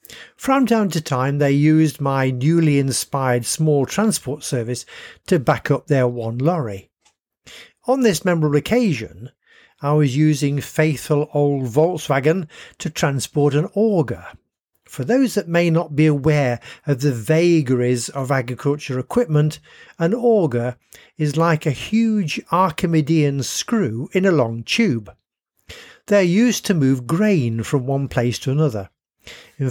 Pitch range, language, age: 130-170 Hz, English, 50-69